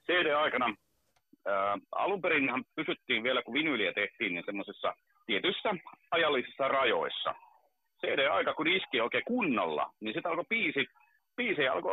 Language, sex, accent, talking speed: Finnish, male, native, 115 wpm